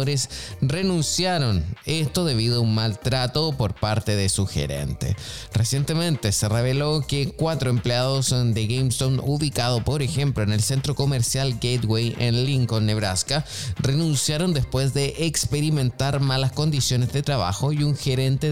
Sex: male